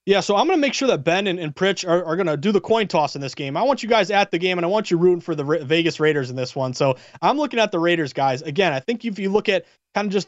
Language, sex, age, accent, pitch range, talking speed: English, male, 30-49, American, 155-200 Hz, 350 wpm